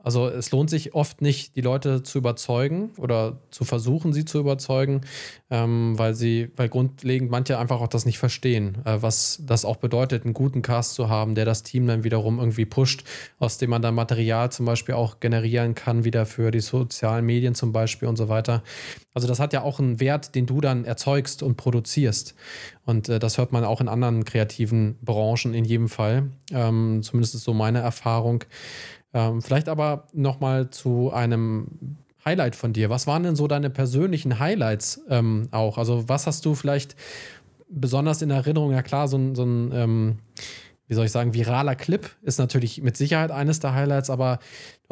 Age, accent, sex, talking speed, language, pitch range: 20-39, German, male, 190 wpm, German, 115-135 Hz